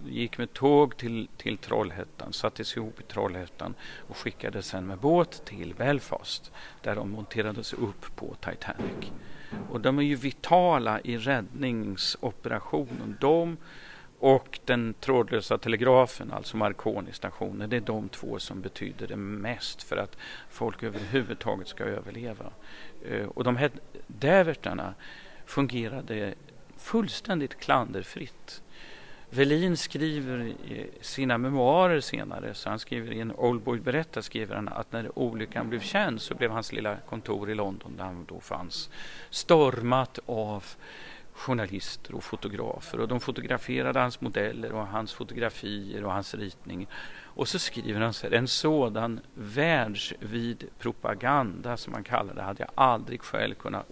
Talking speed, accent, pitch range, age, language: 140 wpm, native, 110-135 Hz, 40-59, Swedish